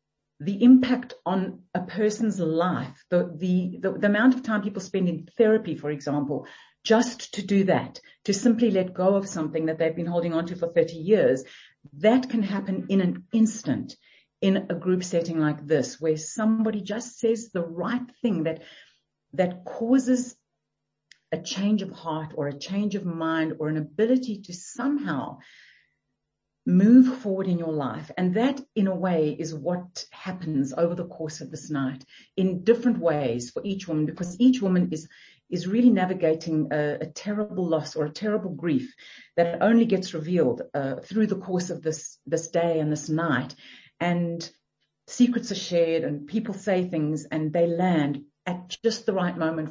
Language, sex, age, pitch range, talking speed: English, female, 50-69, 160-210 Hz, 175 wpm